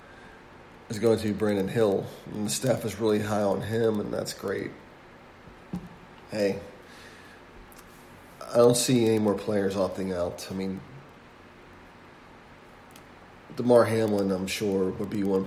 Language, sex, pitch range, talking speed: English, male, 95-110 Hz, 135 wpm